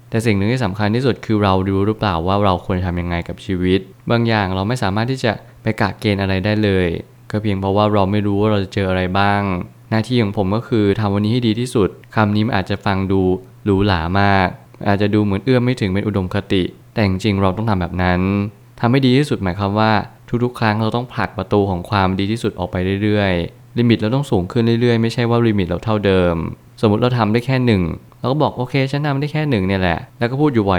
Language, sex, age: Thai, male, 20-39